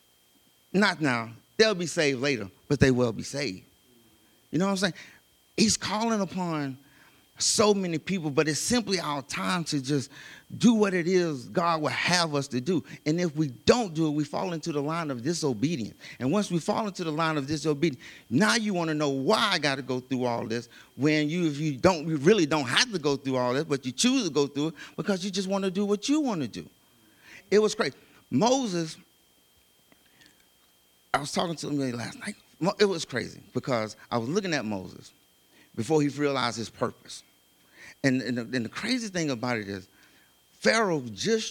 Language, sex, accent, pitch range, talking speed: English, male, American, 125-185 Hz, 200 wpm